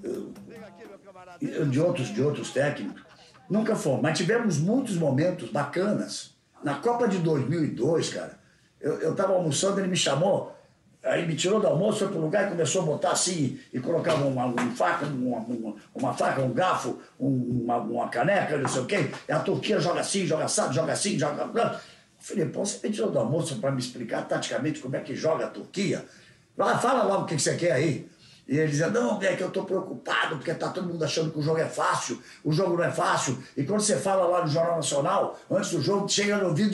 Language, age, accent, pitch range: Portuguese, 60-79, Brazilian, 155-205 Hz